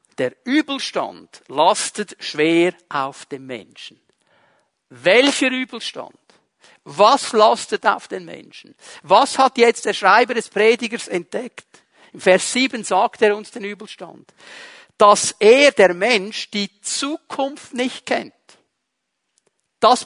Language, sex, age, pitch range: German, male, 50-69, 200-265 Hz